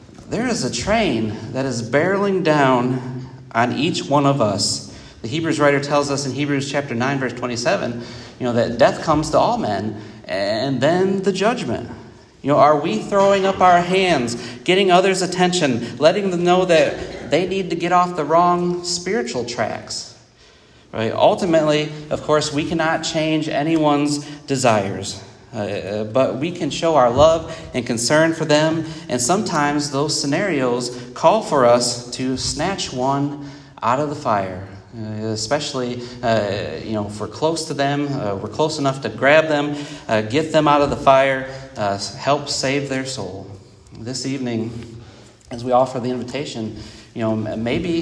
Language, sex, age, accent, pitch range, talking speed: English, male, 40-59, American, 120-155 Hz, 165 wpm